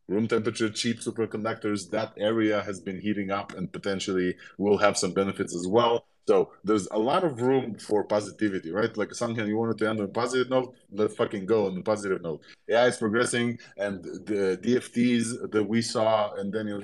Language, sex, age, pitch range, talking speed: English, male, 20-39, 100-115 Hz, 195 wpm